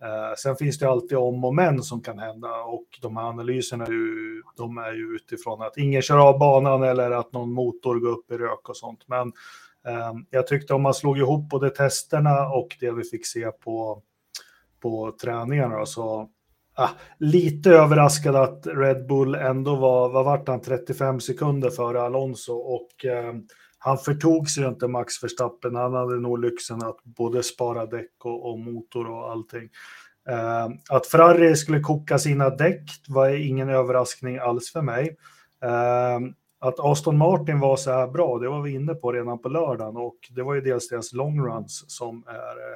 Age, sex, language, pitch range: 30-49, male, Swedish, 120-140 Hz